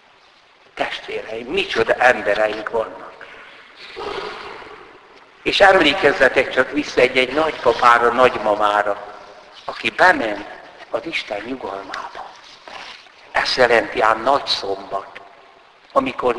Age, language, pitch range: 60-79, Hungarian, 115-155 Hz